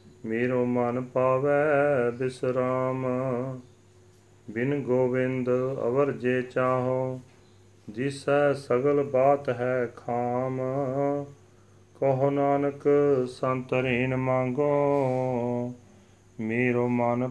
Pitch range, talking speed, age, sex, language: 105-130 Hz, 75 wpm, 40-59, male, Punjabi